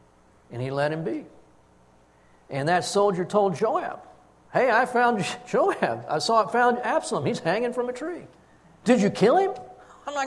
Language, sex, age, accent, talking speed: English, male, 50-69, American, 175 wpm